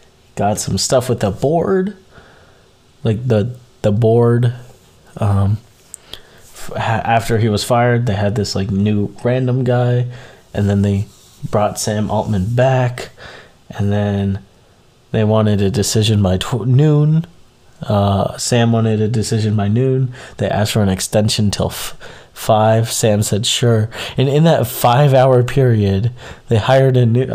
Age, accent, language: 20-39, American, English